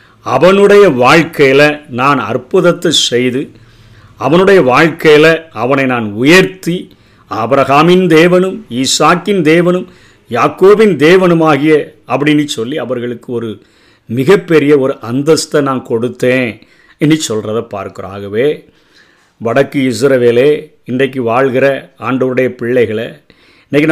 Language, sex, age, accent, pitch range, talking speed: Tamil, male, 50-69, native, 125-165 Hz, 90 wpm